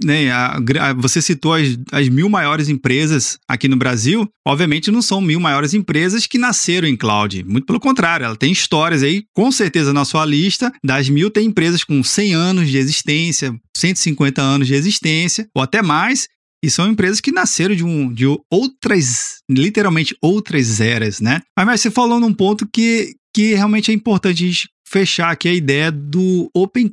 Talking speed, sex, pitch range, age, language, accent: 170 wpm, male, 140-200 Hz, 20-39, Portuguese, Brazilian